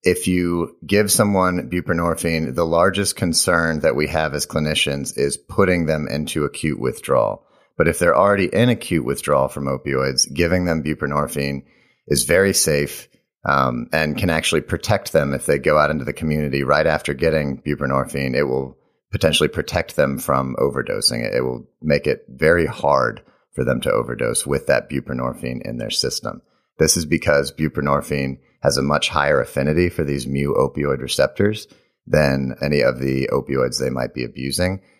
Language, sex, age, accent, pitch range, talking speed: English, male, 40-59, American, 65-85 Hz, 170 wpm